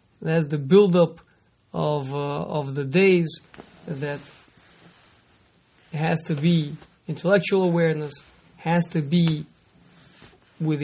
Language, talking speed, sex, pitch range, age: English, 105 wpm, male, 155-185 Hz, 20-39